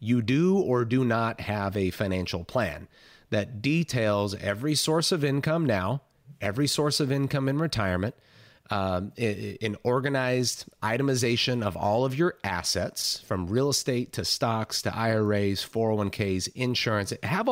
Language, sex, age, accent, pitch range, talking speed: English, male, 30-49, American, 100-140 Hz, 140 wpm